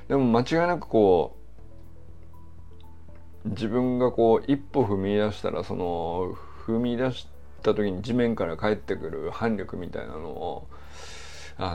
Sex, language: male, Japanese